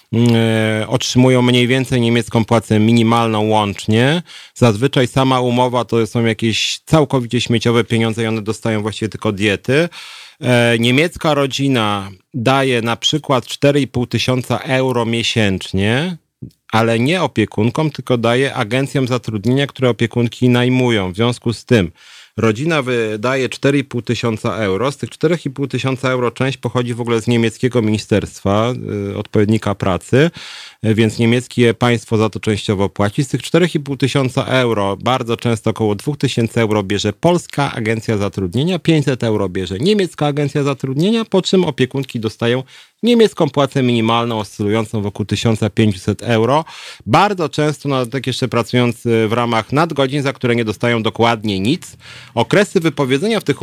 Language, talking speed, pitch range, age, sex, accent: Polish, 140 wpm, 110-135 Hz, 30-49, male, native